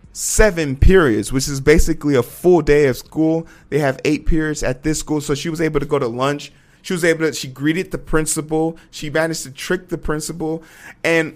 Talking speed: 210 wpm